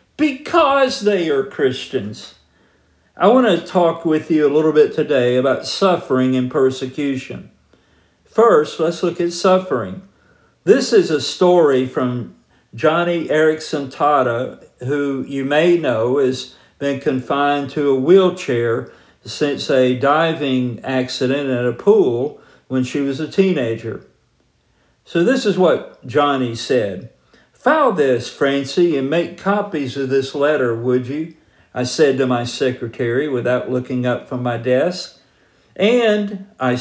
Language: English